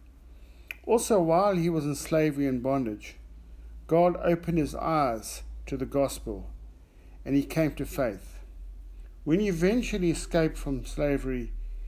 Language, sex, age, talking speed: English, male, 50-69, 130 wpm